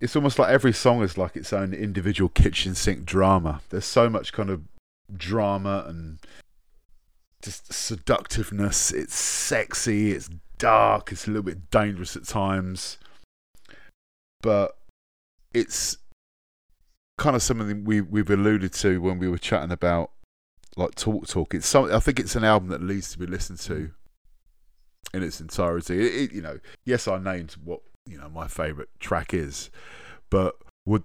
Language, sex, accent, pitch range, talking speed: English, male, British, 85-100 Hz, 160 wpm